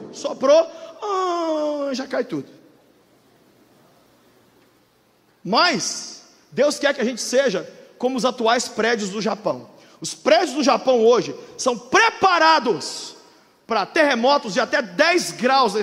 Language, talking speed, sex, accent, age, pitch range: Portuguese, 120 wpm, male, Brazilian, 40-59, 230-330 Hz